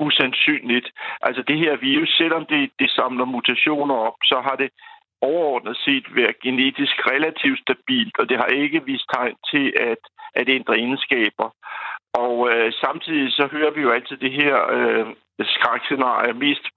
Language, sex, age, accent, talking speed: Danish, male, 60-79, native, 150 wpm